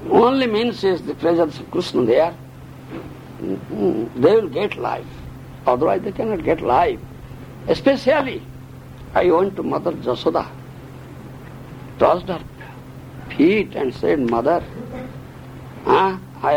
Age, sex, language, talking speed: 60-79, male, Hungarian, 110 wpm